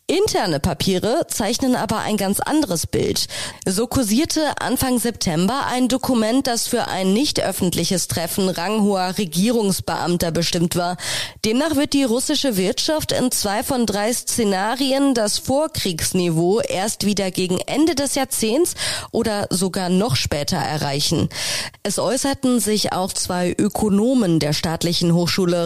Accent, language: German, German